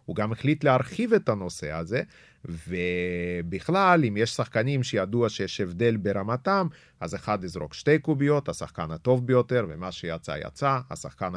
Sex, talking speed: male, 145 wpm